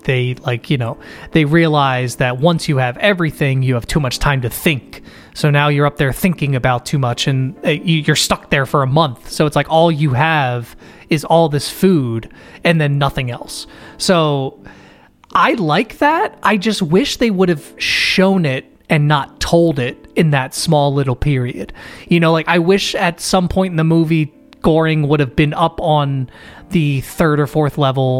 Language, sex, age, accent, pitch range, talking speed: English, male, 30-49, American, 140-180 Hz, 195 wpm